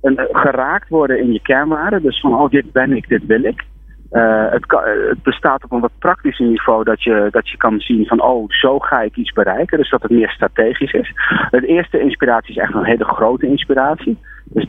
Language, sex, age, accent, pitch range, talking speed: Dutch, male, 40-59, Dutch, 110-135 Hz, 220 wpm